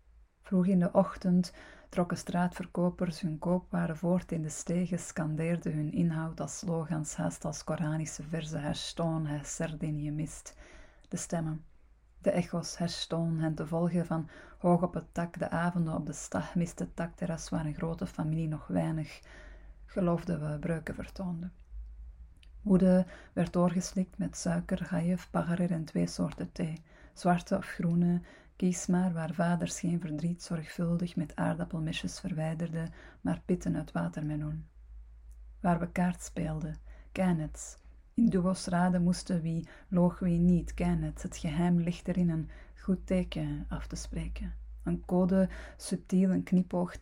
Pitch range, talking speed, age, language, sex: 155-180 Hz, 145 wpm, 30-49, Dutch, female